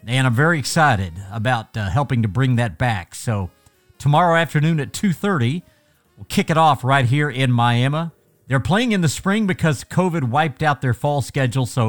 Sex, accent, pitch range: male, American, 110-150 Hz